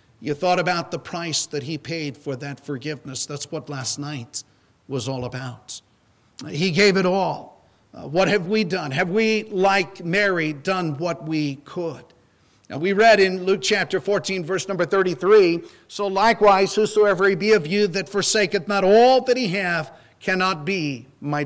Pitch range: 150-190 Hz